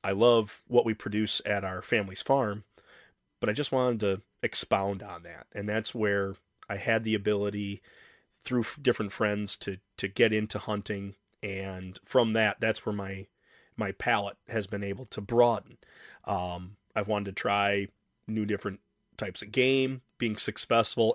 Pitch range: 100-115 Hz